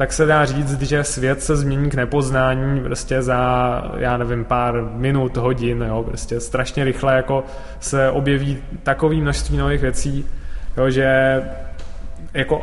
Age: 20-39